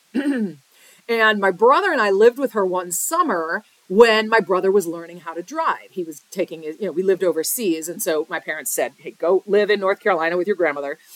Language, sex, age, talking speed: English, female, 40-59, 220 wpm